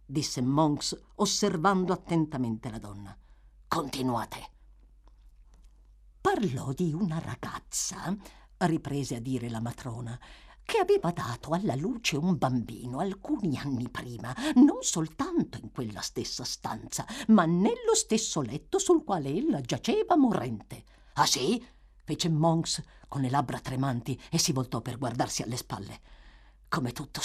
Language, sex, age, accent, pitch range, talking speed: Italian, female, 50-69, native, 130-215 Hz, 130 wpm